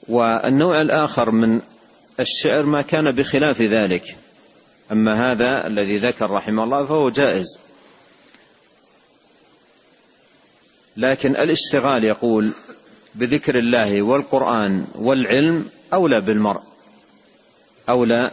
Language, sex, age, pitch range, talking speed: Arabic, male, 40-59, 110-135 Hz, 85 wpm